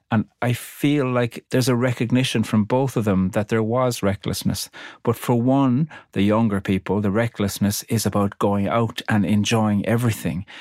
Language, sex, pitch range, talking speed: English, male, 100-120 Hz, 170 wpm